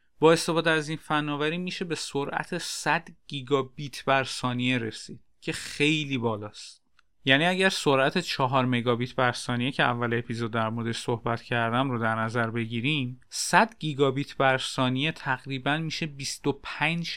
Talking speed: 145 wpm